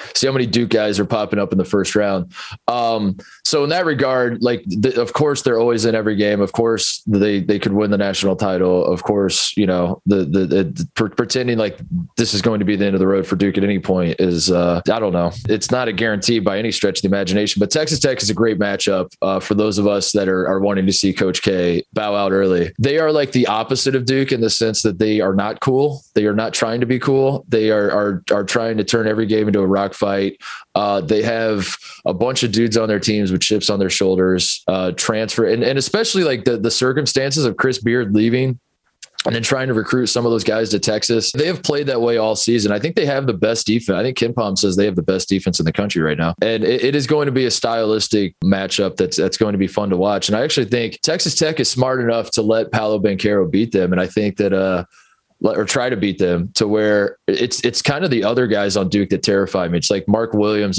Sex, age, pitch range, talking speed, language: male, 20-39, 100-120 Hz, 260 wpm, English